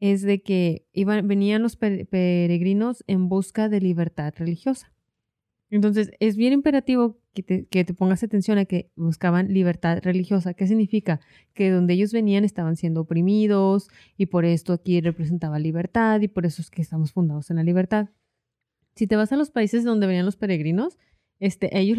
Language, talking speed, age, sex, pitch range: Spanish, 175 wpm, 30-49, female, 180-215 Hz